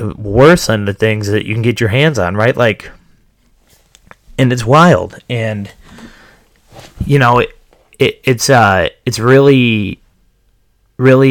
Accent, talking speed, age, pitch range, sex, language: American, 140 wpm, 30-49, 100-120 Hz, male, English